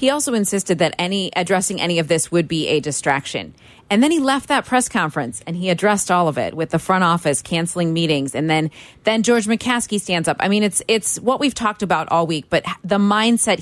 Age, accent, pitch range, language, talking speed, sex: 30-49, American, 165-210 Hz, English, 230 wpm, female